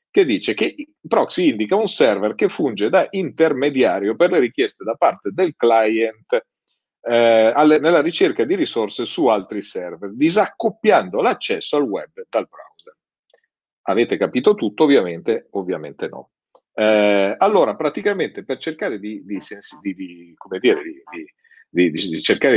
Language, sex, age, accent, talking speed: Italian, male, 40-59, native, 115 wpm